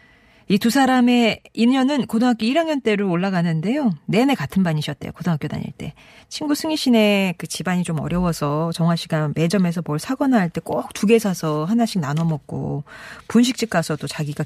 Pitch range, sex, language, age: 155-210 Hz, female, Korean, 40-59